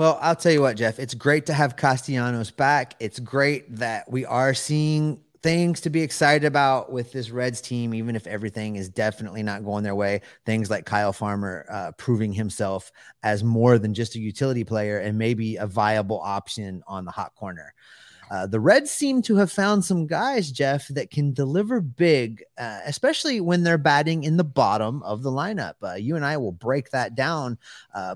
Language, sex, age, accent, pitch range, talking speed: English, male, 30-49, American, 105-145 Hz, 200 wpm